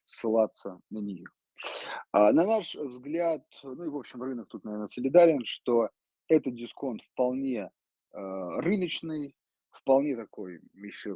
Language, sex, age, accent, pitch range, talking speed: Russian, male, 30-49, native, 100-140 Hz, 130 wpm